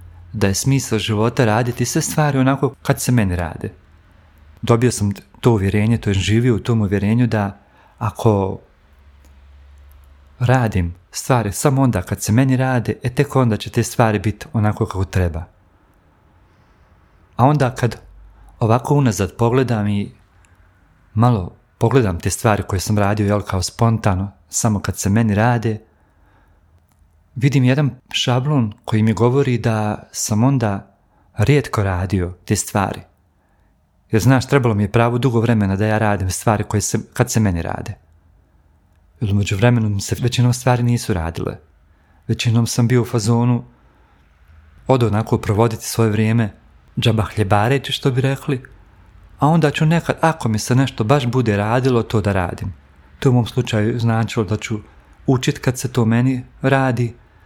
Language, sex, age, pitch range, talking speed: Croatian, male, 40-59, 95-120 Hz, 150 wpm